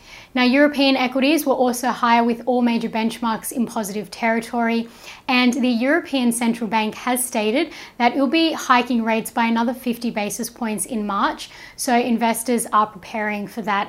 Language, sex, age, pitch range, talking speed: English, female, 10-29, 220-255 Hz, 170 wpm